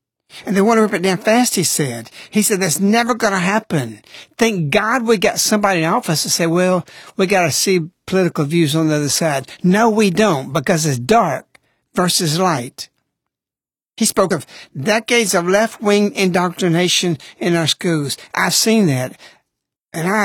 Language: English